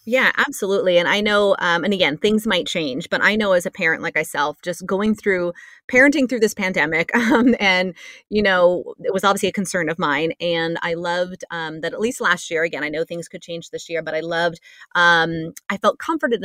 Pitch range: 165-200 Hz